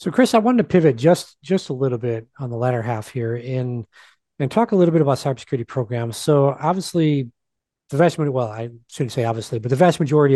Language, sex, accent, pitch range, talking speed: English, male, American, 120-145 Hz, 225 wpm